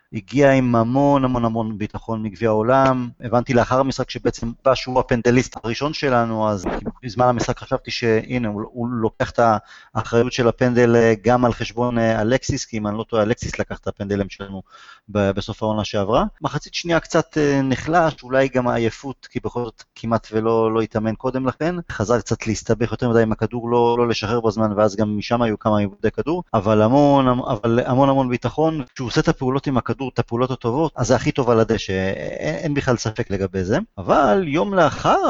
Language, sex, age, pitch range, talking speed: Hebrew, male, 30-49, 110-135 Hz, 165 wpm